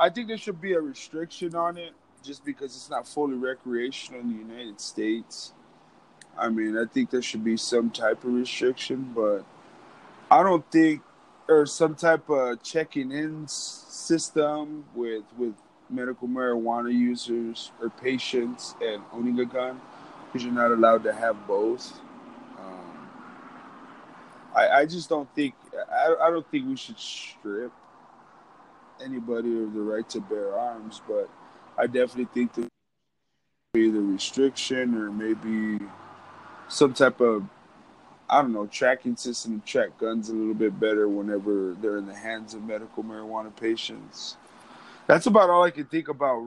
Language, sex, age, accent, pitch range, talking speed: English, male, 20-39, American, 110-150 Hz, 155 wpm